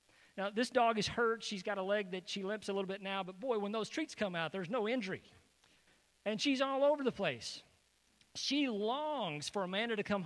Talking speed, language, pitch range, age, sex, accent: 220 wpm, English, 185-250 Hz, 40-59, male, American